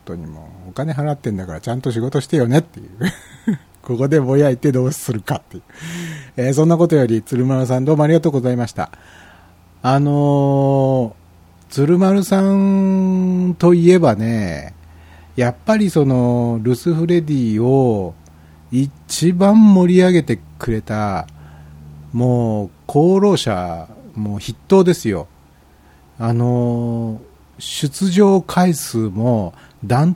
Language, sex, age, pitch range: Japanese, male, 60-79, 100-155 Hz